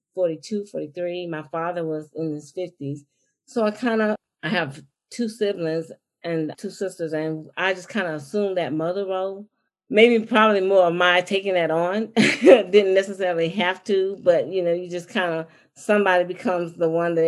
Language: English